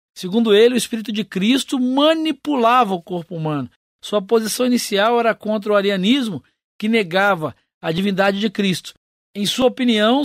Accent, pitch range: Brazilian, 195-240 Hz